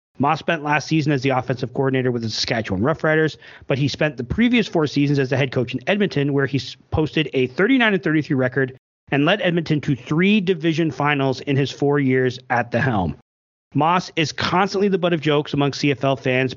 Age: 30-49